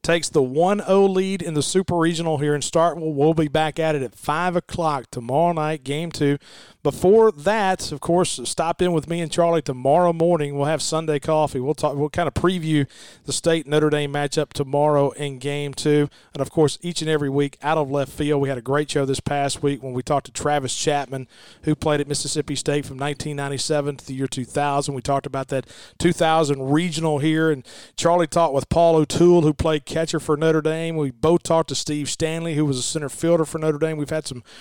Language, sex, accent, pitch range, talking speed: English, male, American, 140-170 Hz, 220 wpm